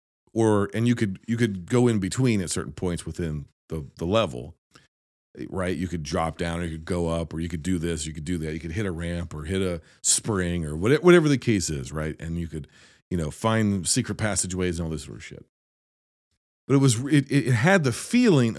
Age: 40-59